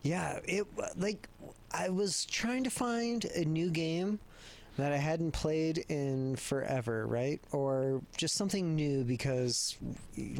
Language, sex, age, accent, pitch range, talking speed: English, male, 30-49, American, 120-145 Hz, 140 wpm